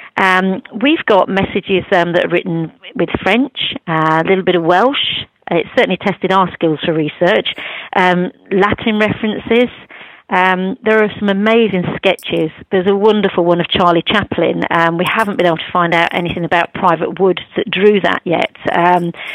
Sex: female